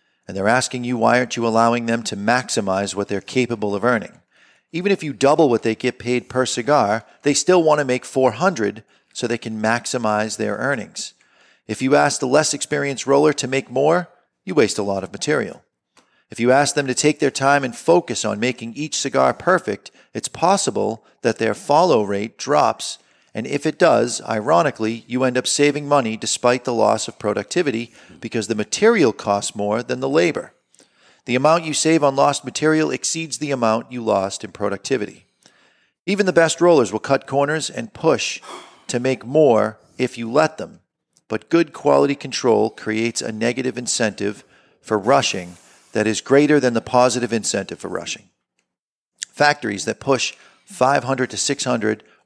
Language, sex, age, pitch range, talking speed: English, male, 40-59, 110-145 Hz, 175 wpm